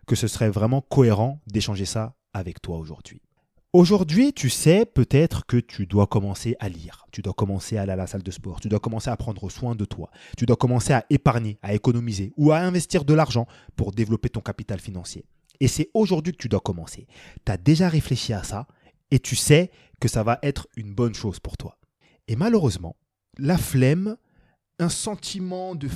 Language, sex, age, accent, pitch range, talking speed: French, male, 30-49, French, 110-155 Hz, 200 wpm